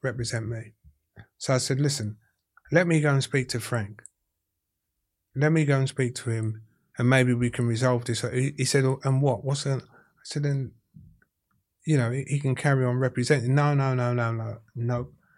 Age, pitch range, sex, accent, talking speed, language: 30-49, 115-130 Hz, male, British, 185 wpm, English